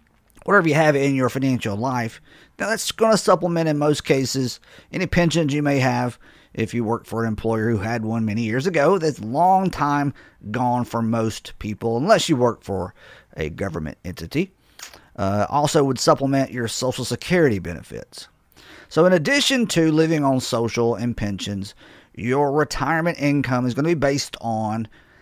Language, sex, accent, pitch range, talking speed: English, male, American, 115-160 Hz, 170 wpm